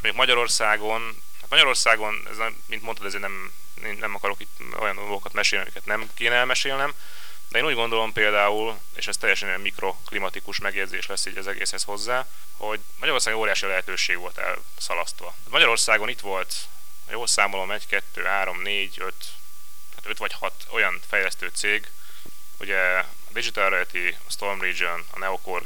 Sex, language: male, Hungarian